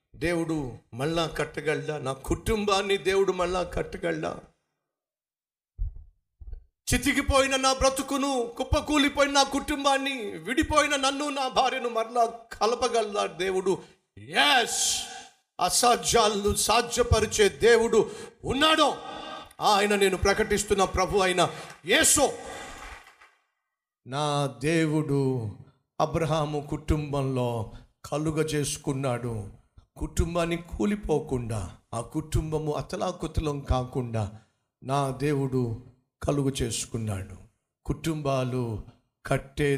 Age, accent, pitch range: 50-69, native, 125-205 Hz